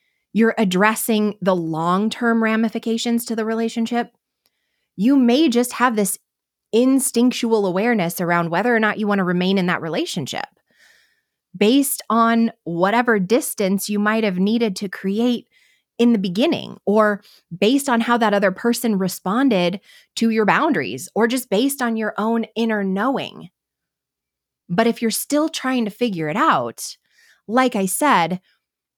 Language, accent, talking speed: English, American, 145 wpm